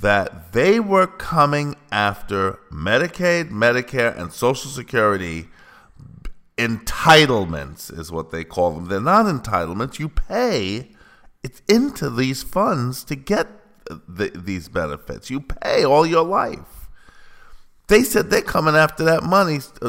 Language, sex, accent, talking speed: English, male, American, 125 wpm